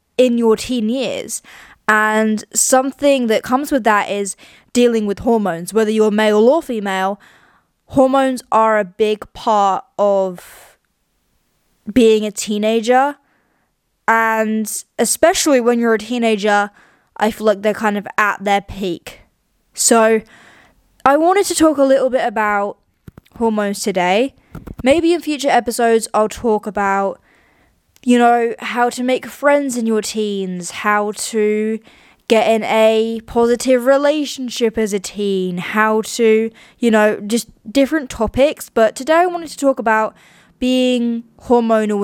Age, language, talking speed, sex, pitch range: 20-39, English, 135 wpm, female, 210-255 Hz